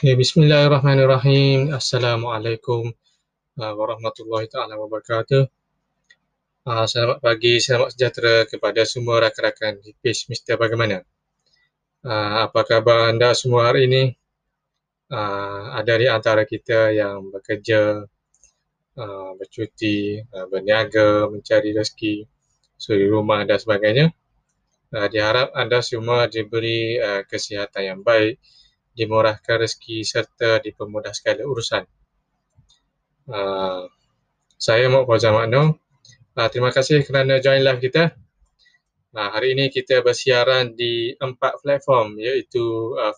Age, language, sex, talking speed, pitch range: 20-39, Malay, male, 95 wpm, 110-135 Hz